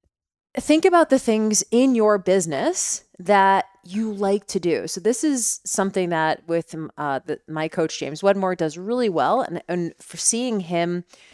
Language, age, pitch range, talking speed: English, 20-39, 170-220 Hz, 170 wpm